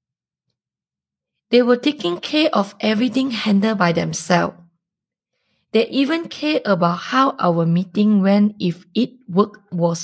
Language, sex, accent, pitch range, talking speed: English, female, Malaysian, 180-235 Hz, 130 wpm